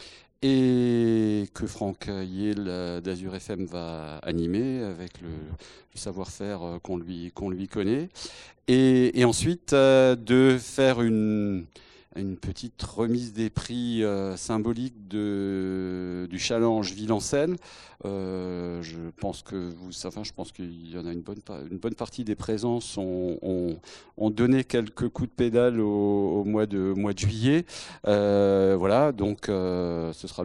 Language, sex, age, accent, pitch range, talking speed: French, male, 40-59, French, 95-120 Hz, 140 wpm